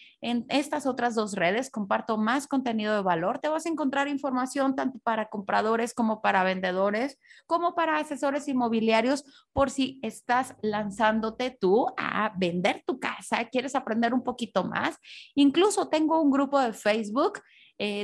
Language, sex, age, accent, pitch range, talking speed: Spanish, female, 30-49, Mexican, 215-280 Hz, 155 wpm